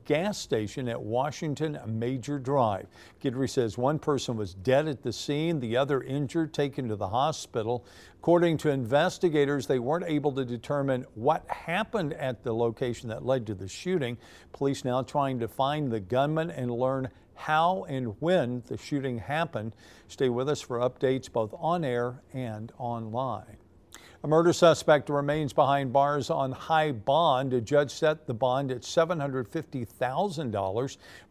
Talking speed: 155 wpm